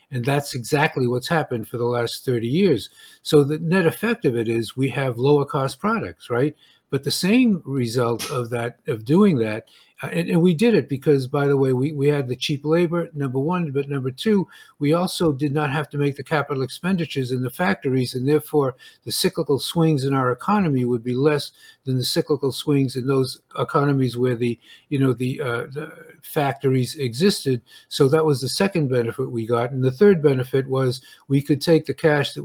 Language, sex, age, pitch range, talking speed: English, male, 50-69, 125-155 Hz, 205 wpm